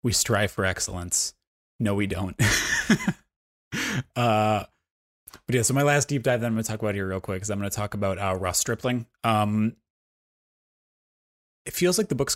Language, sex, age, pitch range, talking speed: English, male, 20-39, 100-120 Hz, 190 wpm